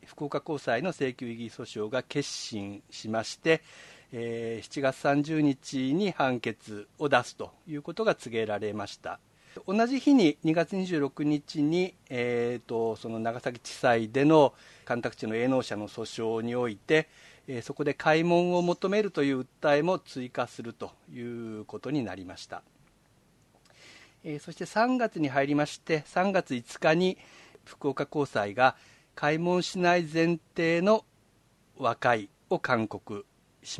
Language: Japanese